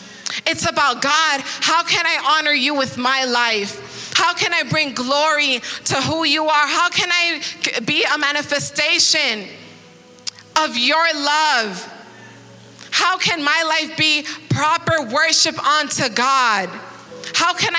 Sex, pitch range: female, 235-295 Hz